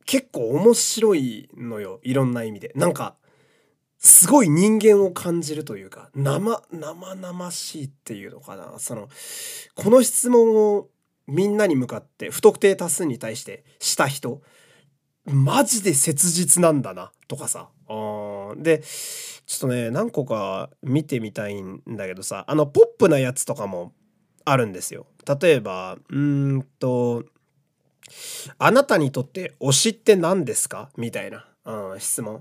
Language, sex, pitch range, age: Japanese, male, 125-210 Hz, 20-39